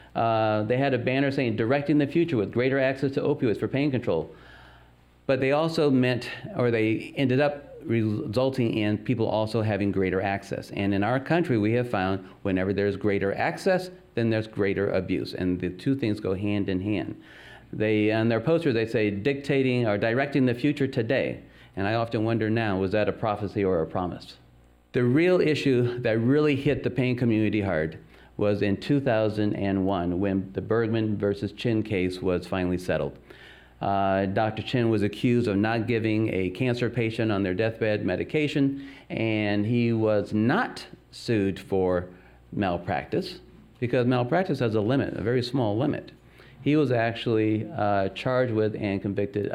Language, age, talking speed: English, 40-59, 170 wpm